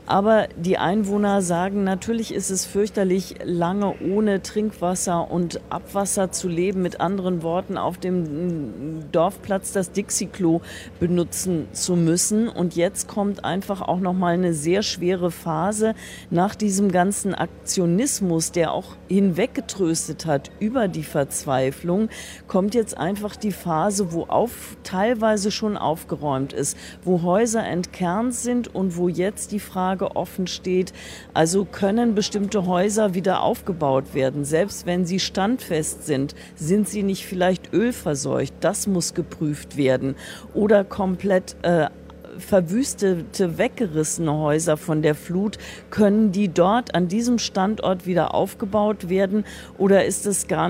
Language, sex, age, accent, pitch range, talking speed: German, female, 40-59, German, 170-205 Hz, 135 wpm